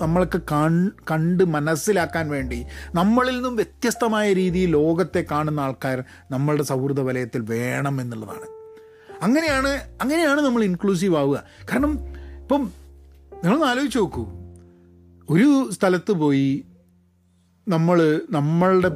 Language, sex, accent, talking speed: Malayalam, male, native, 95 wpm